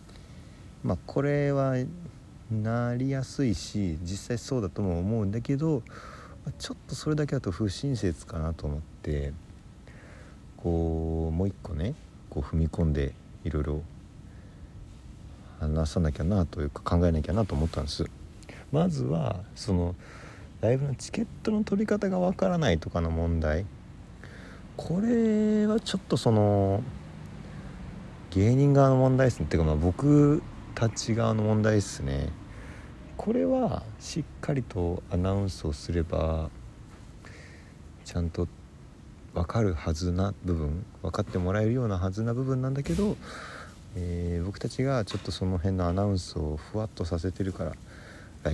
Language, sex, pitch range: Japanese, male, 80-115 Hz